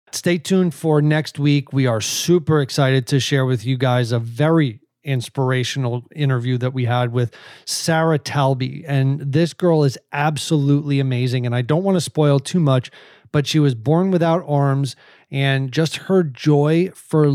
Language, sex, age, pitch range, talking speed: English, male, 30-49, 130-150 Hz, 170 wpm